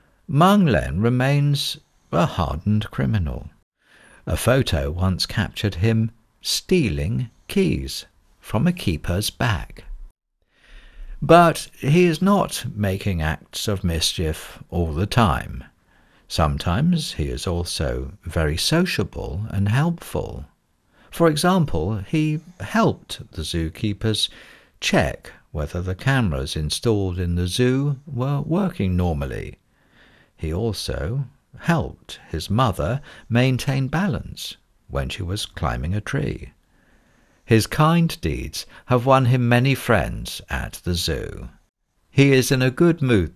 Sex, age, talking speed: male, 60-79, 115 wpm